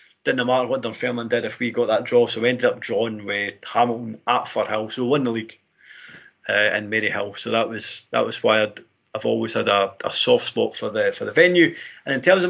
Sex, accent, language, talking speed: male, British, English, 245 wpm